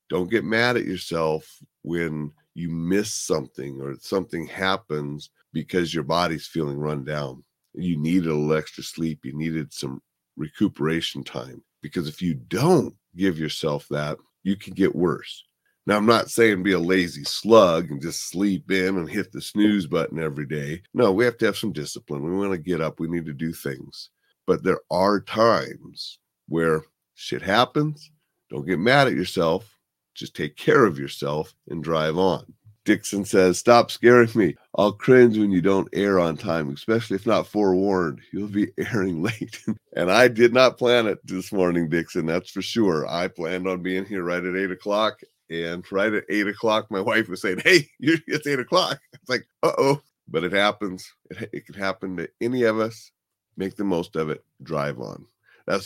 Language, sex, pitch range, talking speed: English, male, 80-105 Hz, 185 wpm